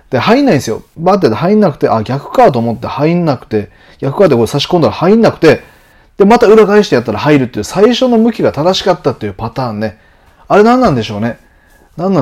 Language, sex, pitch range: Japanese, male, 110-175 Hz